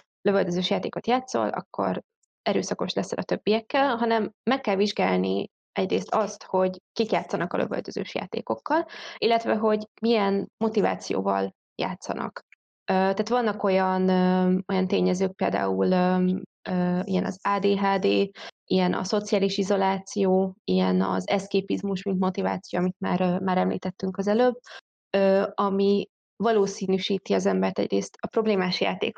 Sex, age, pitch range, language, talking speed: female, 20-39, 185-210 Hz, Hungarian, 115 wpm